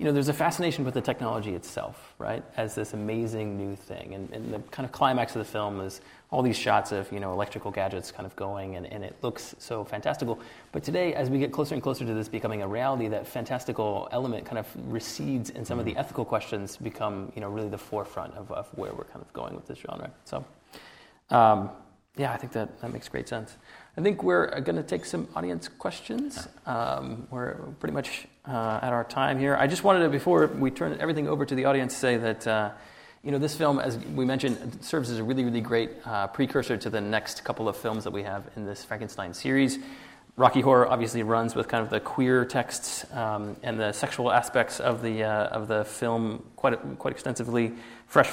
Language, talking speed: English, 220 wpm